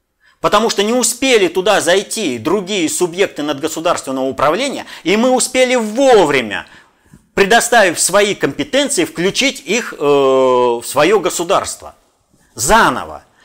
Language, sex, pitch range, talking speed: Russian, male, 140-225 Hz, 105 wpm